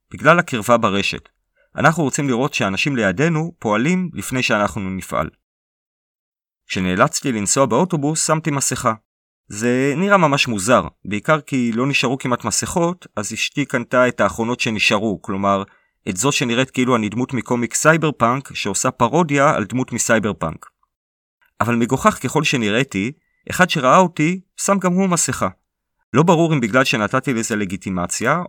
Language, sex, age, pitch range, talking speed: Hebrew, male, 30-49, 105-145 Hz, 140 wpm